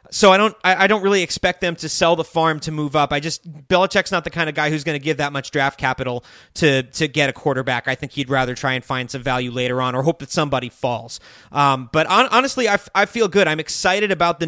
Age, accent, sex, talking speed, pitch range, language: 30-49, American, male, 270 wpm, 150-195 Hz, English